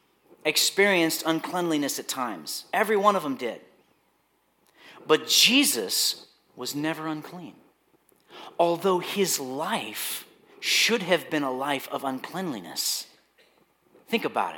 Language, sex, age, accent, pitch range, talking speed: English, male, 40-59, American, 155-210 Hz, 105 wpm